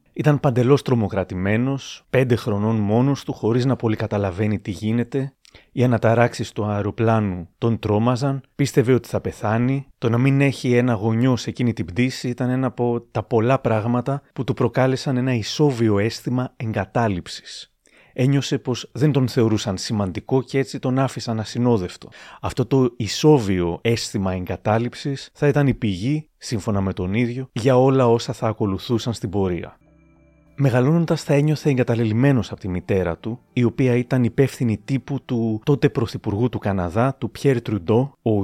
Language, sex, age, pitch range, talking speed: Greek, male, 30-49, 110-135 Hz, 155 wpm